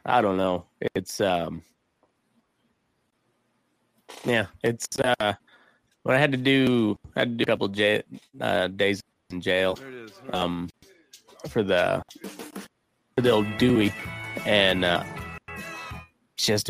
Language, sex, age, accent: English, male, 20-39, American